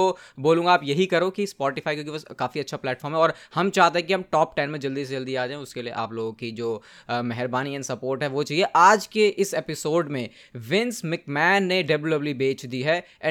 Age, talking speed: 20-39, 165 wpm